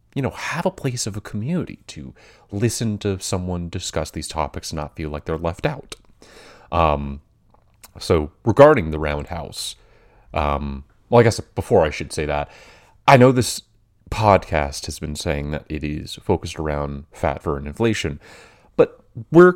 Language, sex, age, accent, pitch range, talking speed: English, male, 30-49, American, 75-105 Hz, 170 wpm